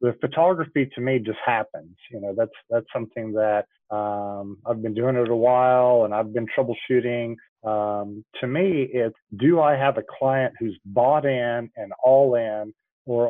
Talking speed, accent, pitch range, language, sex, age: 175 wpm, American, 110-135 Hz, English, male, 40-59